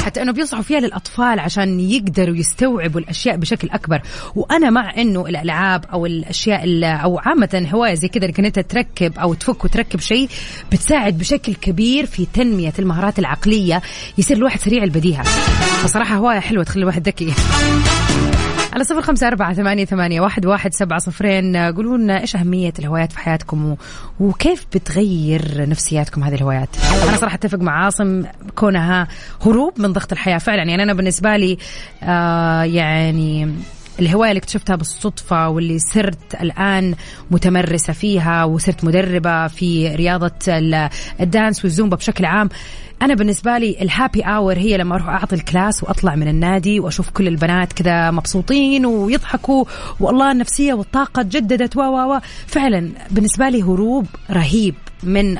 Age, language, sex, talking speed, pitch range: 20-39, English, female, 145 wpm, 170-220 Hz